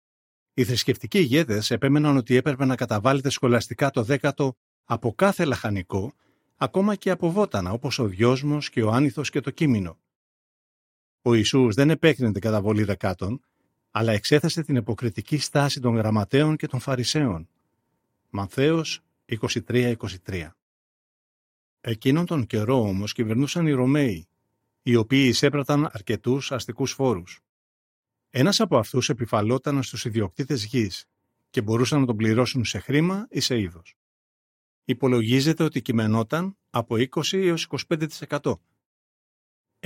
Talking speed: 125 wpm